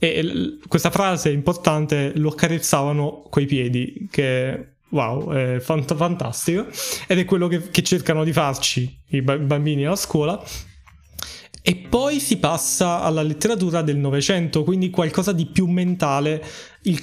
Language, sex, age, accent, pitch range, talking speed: Italian, male, 20-39, native, 150-180 Hz, 145 wpm